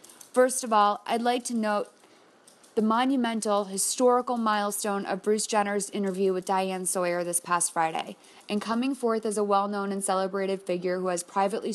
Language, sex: English, female